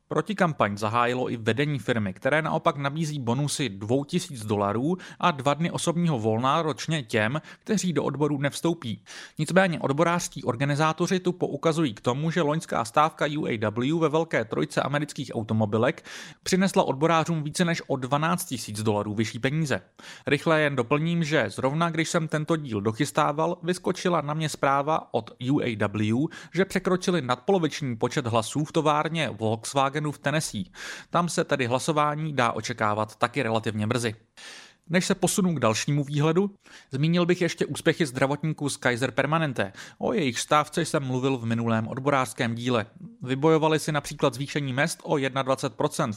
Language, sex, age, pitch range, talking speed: English, male, 30-49, 120-165 Hz, 150 wpm